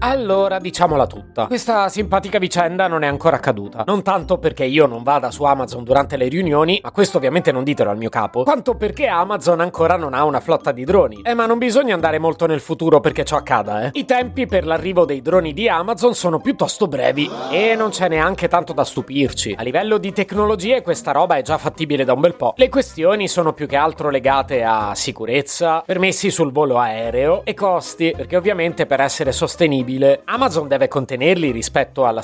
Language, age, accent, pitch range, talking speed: Italian, 30-49, native, 145-195 Hz, 200 wpm